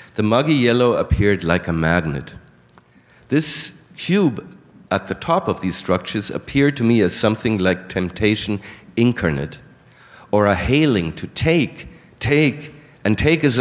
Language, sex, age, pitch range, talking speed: English, male, 50-69, 100-145 Hz, 140 wpm